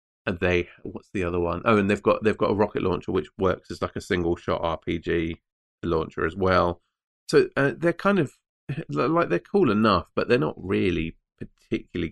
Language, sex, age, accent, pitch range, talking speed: English, male, 30-49, British, 85-105 Hz, 190 wpm